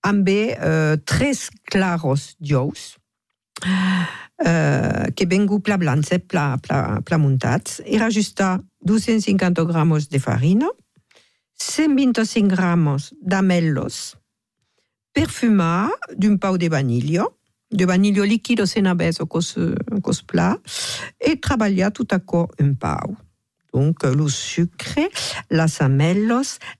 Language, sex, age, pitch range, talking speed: French, female, 50-69, 160-210 Hz, 105 wpm